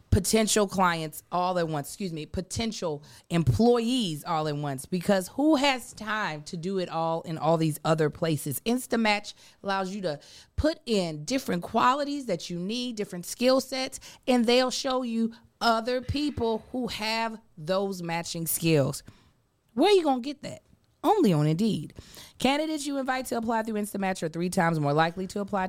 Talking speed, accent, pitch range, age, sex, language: 175 wpm, American, 155-215 Hz, 30-49, female, English